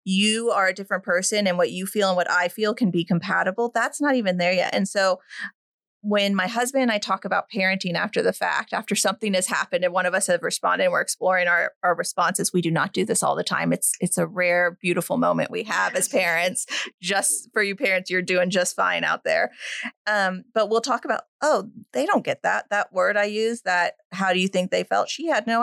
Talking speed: 240 wpm